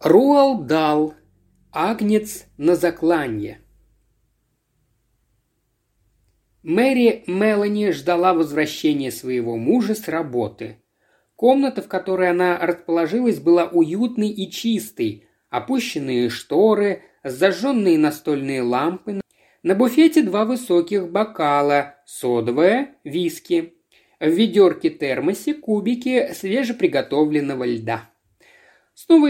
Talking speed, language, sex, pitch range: 85 wpm, Russian, male, 150-235 Hz